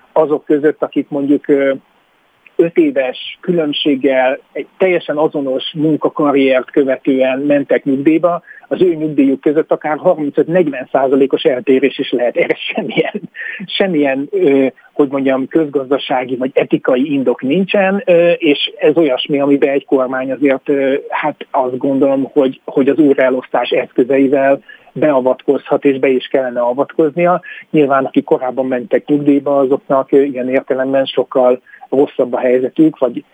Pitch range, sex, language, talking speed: 130-155 Hz, male, Hungarian, 120 wpm